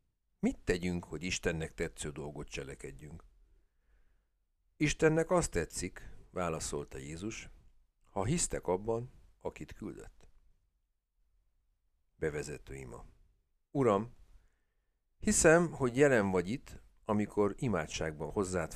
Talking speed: 90 wpm